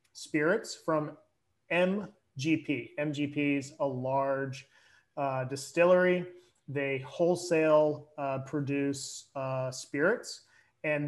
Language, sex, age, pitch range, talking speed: English, male, 30-49, 135-170 Hz, 85 wpm